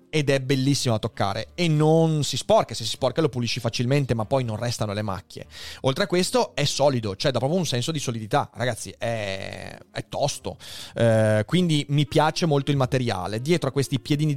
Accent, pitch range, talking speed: native, 120-150 Hz, 200 wpm